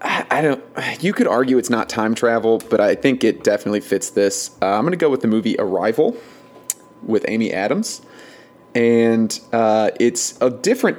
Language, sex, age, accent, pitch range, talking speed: English, male, 30-49, American, 105-120 Hz, 175 wpm